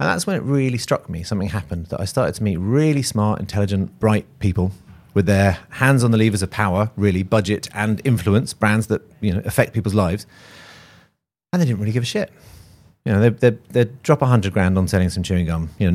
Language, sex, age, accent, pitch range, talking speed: English, male, 30-49, British, 100-125 Hz, 225 wpm